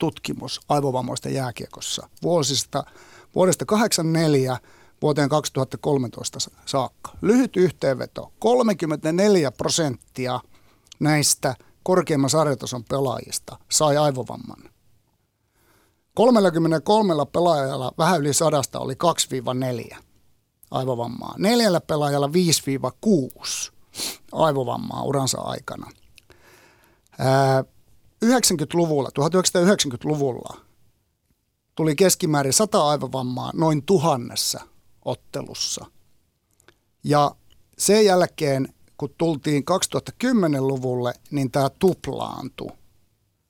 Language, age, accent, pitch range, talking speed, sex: Finnish, 60-79, native, 125-170 Hz, 70 wpm, male